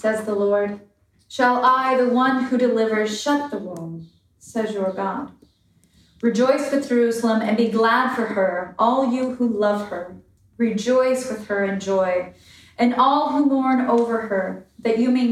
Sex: female